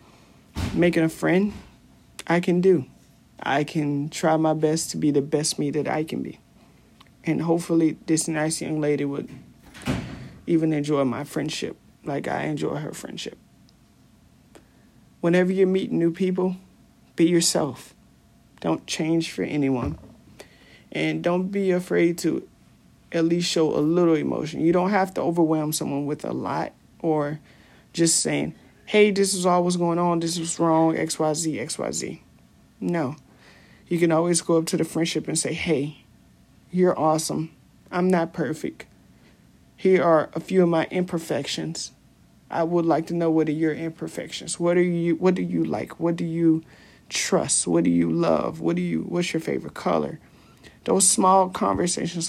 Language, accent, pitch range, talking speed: English, American, 155-175 Hz, 160 wpm